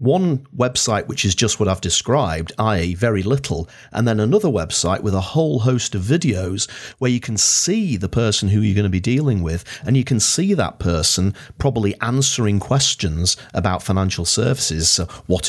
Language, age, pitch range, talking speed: English, 40-59, 95-130 Hz, 185 wpm